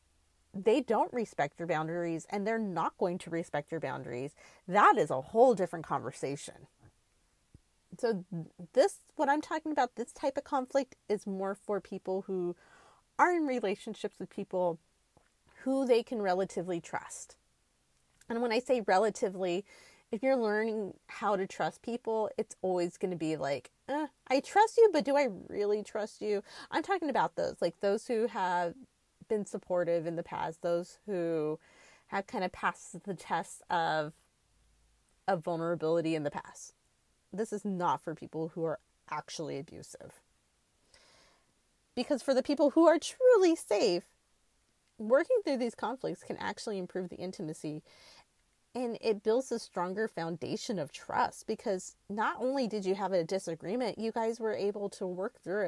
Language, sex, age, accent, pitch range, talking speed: English, female, 30-49, American, 175-240 Hz, 160 wpm